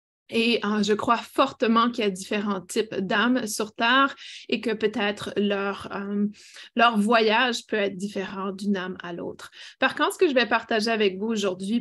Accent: Canadian